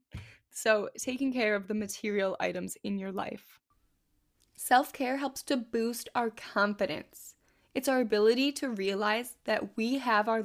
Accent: American